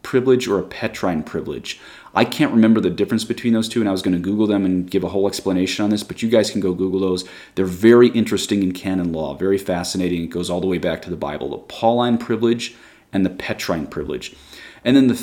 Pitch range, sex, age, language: 90-115 Hz, male, 30-49, English